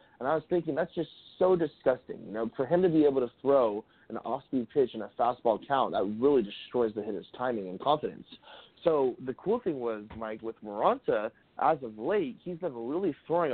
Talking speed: 210 wpm